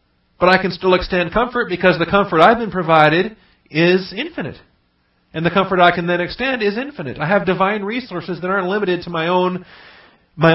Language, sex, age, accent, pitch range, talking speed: English, male, 40-59, American, 125-180 Hz, 195 wpm